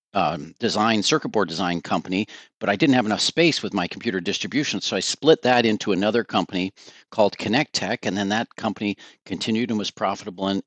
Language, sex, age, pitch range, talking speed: English, male, 40-59, 95-110 Hz, 195 wpm